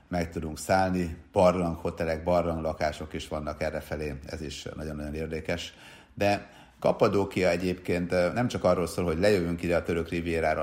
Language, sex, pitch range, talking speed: Hungarian, male, 80-90 Hz, 140 wpm